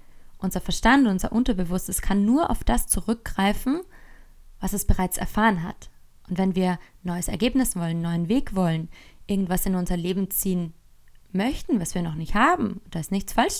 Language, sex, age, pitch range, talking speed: German, female, 20-39, 175-220 Hz, 170 wpm